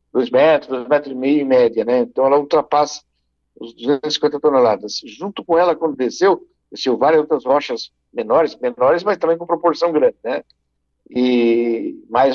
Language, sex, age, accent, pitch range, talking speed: Portuguese, male, 60-79, Brazilian, 130-175 Hz, 165 wpm